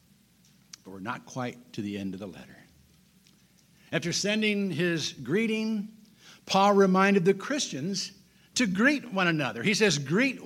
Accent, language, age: American, English, 60-79